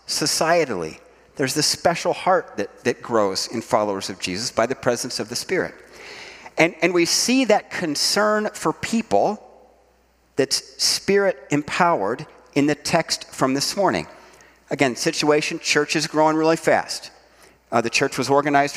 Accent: American